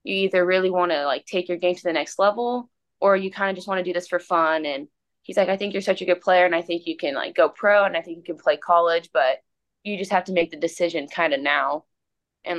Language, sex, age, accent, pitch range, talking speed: English, female, 20-39, American, 160-190 Hz, 290 wpm